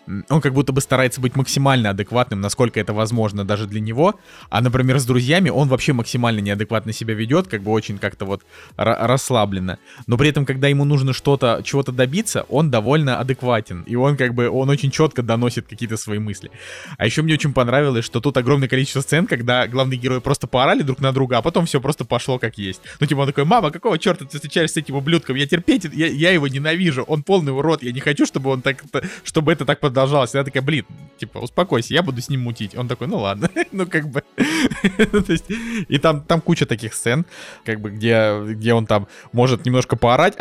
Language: Russian